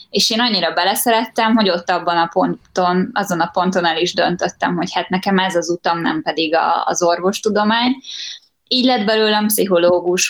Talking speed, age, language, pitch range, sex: 170 wpm, 20-39, Hungarian, 180-225 Hz, female